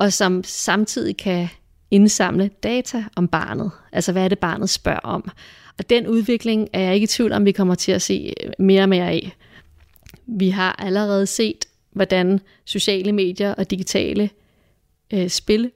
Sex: female